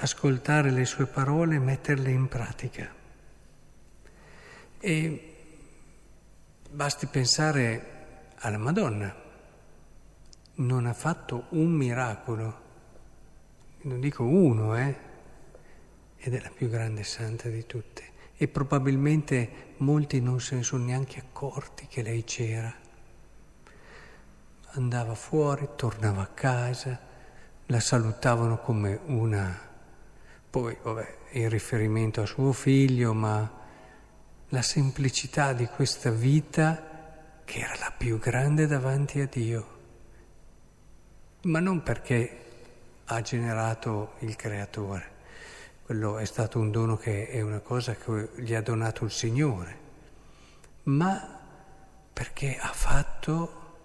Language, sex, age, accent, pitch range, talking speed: Italian, male, 50-69, native, 115-145 Hz, 110 wpm